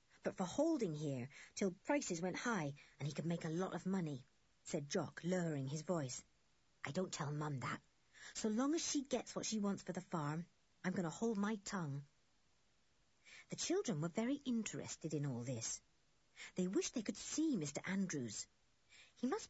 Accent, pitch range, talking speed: British, 150-250 Hz, 185 wpm